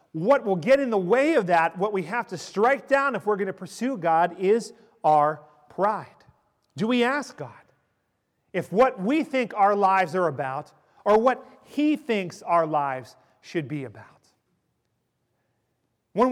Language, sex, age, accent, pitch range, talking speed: English, male, 40-59, American, 150-240 Hz, 165 wpm